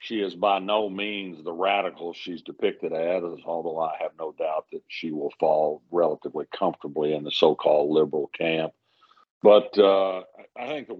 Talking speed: 175 wpm